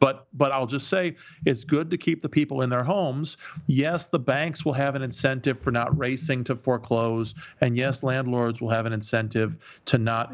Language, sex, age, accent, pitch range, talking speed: English, male, 40-59, American, 120-145 Hz, 205 wpm